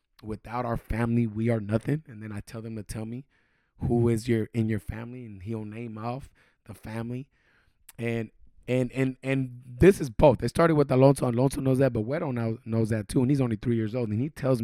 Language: English